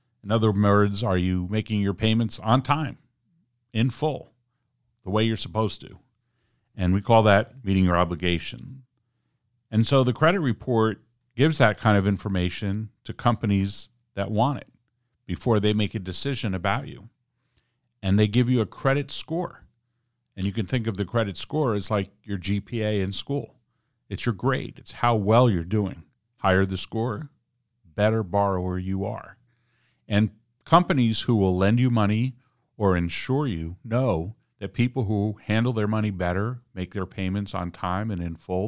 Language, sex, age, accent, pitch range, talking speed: English, male, 50-69, American, 95-120 Hz, 170 wpm